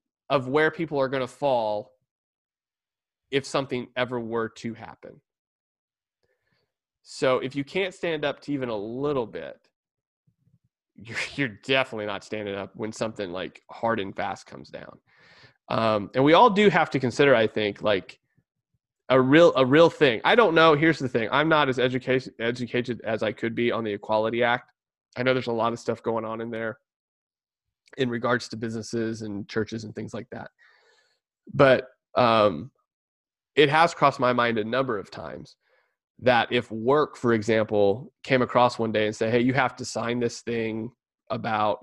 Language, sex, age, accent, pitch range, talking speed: English, male, 30-49, American, 110-135 Hz, 175 wpm